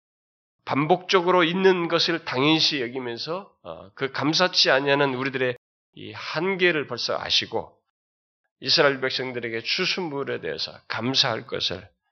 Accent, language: native, Korean